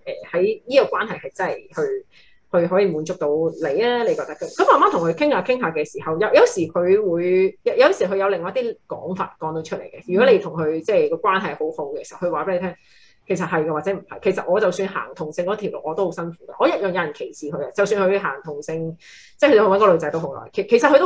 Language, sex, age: Chinese, female, 30-49